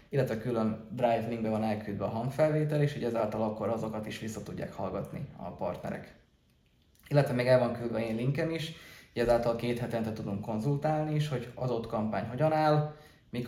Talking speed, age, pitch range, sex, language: 180 wpm, 20-39, 110-130 Hz, male, Hungarian